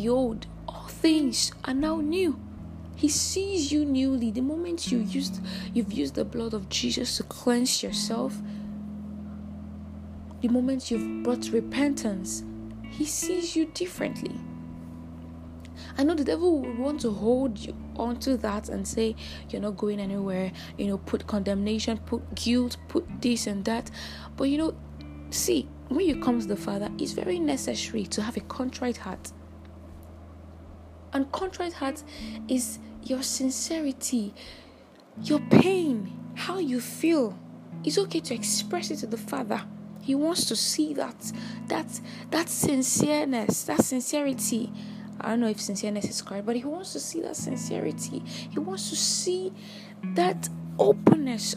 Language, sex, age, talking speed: English, female, 20-39, 145 wpm